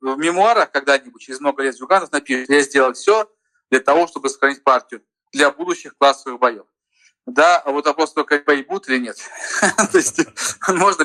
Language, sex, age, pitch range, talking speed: Russian, male, 40-59, 140-195 Hz, 165 wpm